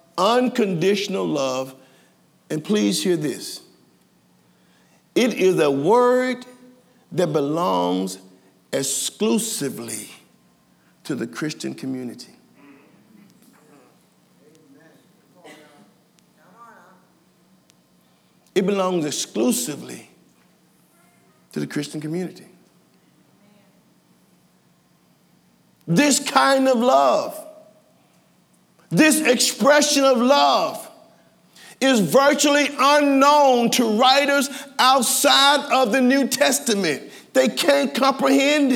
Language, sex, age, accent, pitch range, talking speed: English, male, 50-69, American, 170-265 Hz, 70 wpm